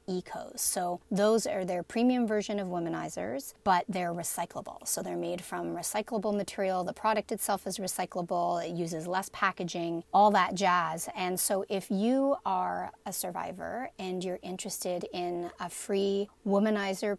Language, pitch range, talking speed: English, 180-220 Hz, 155 wpm